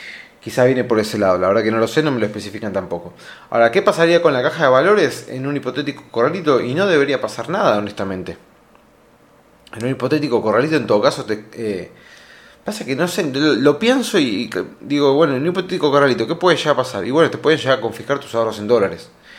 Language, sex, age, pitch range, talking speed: Spanish, male, 20-39, 115-150 Hz, 225 wpm